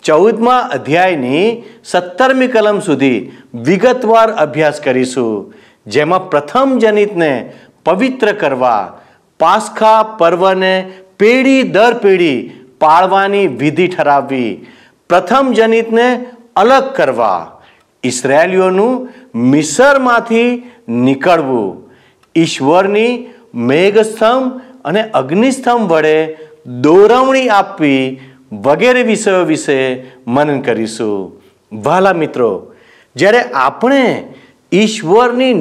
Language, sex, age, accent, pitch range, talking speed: Gujarati, male, 50-69, native, 150-240 Hz, 75 wpm